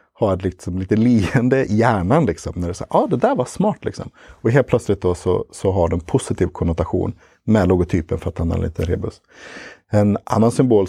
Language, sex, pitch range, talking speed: Swedish, male, 85-115 Hz, 205 wpm